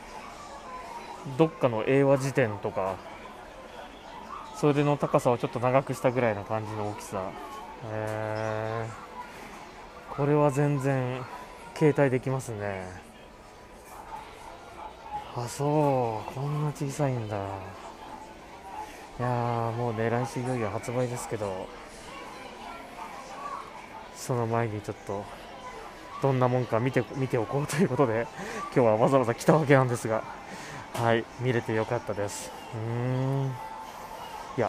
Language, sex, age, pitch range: Japanese, male, 20-39, 110-140 Hz